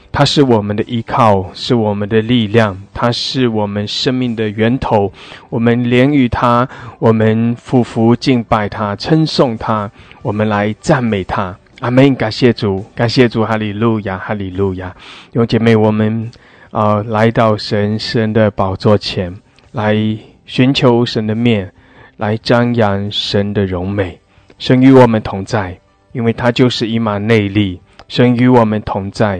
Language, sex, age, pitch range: English, male, 20-39, 105-120 Hz